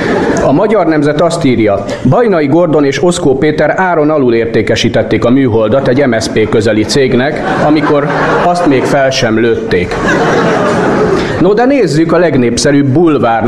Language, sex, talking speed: Hungarian, male, 135 wpm